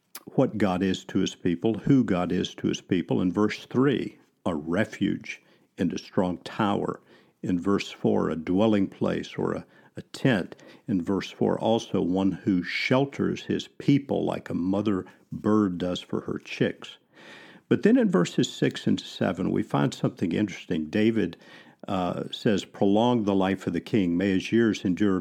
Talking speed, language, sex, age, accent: 170 wpm, English, male, 50-69, American